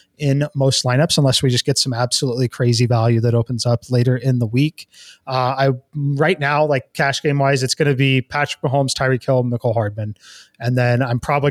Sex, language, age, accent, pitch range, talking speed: male, English, 20-39, American, 125-145 Hz, 210 wpm